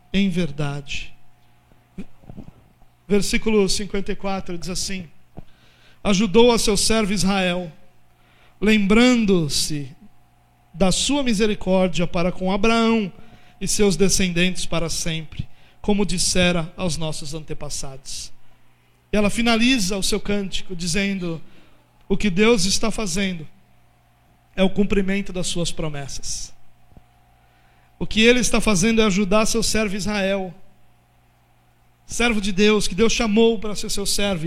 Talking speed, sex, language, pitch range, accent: 115 wpm, male, Portuguese, 160-225 Hz, Brazilian